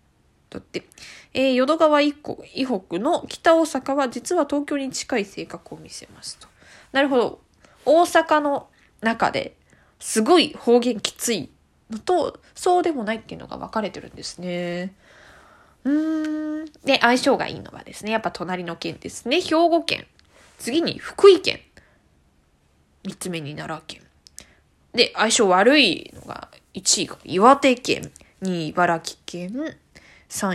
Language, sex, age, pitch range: Japanese, female, 20-39, 195-310 Hz